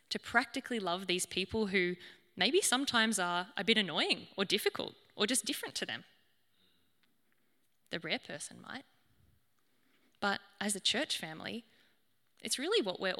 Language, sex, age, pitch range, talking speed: English, female, 10-29, 180-235 Hz, 145 wpm